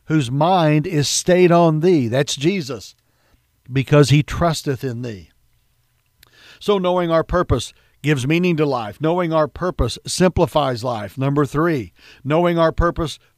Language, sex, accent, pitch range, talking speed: English, male, American, 130-175 Hz, 140 wpm